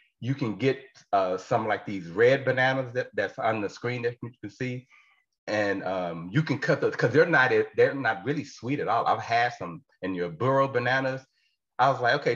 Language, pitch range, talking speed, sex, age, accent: English, 125-165 Hz, 215 wpm, male, 40-59, American